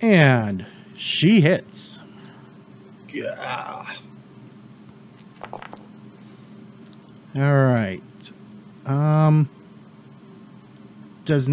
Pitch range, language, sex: 140-190 Hz, English, male